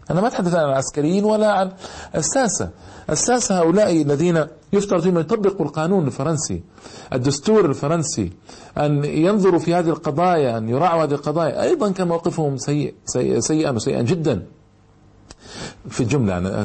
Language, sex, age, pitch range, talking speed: Arabic, male, 50-69, 120-165 Hz, 145 wpm